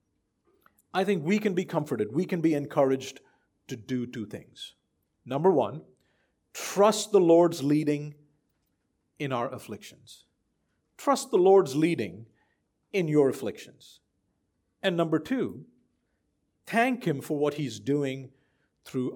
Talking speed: 125 wpm